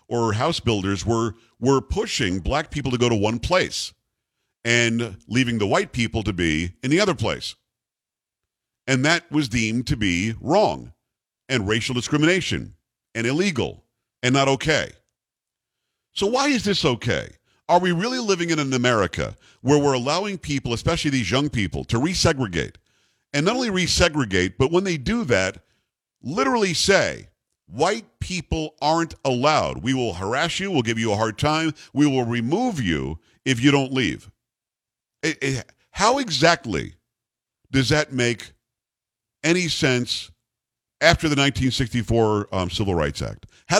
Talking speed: 150 wpm